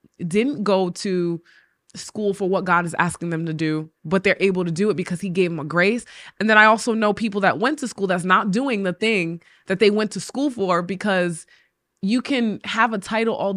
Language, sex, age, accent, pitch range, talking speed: English, female, 20-39, American, 175-215 Hz, 230 wpm